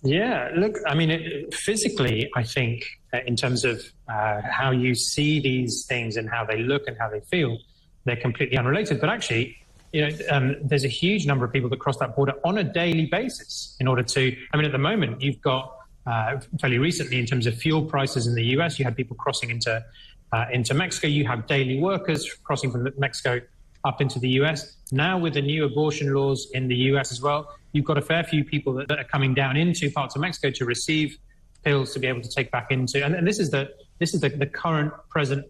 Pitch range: 125-150 Hz